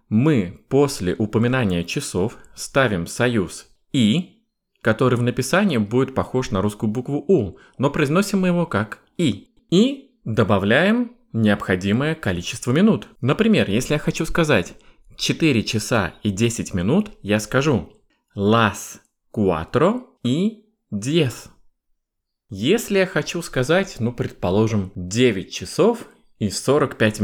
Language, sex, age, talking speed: Russian, male, 20-39, 115 wpm